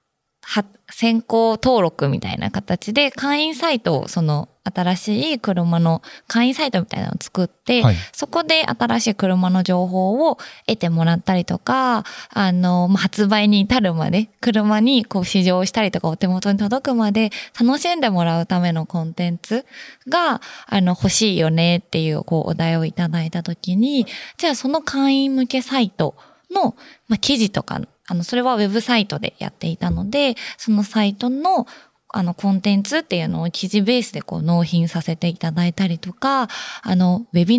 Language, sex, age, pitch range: Japanese, female, 20-39, 175-245 Hz